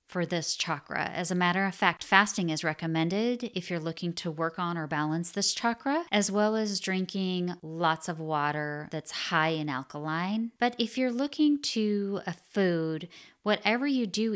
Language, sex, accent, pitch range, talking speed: English, female, American, 160-210 Hz, 175 wpm